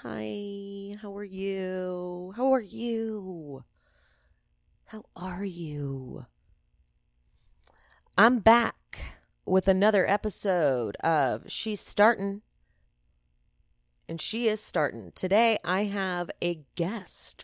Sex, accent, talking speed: female, American, 95 wpm